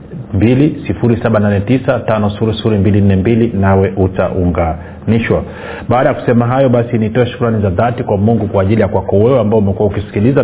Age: 30-49